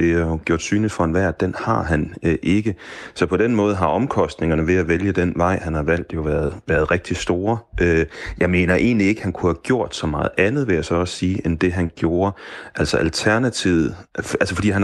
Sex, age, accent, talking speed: male, 30-49, native, 230 wpm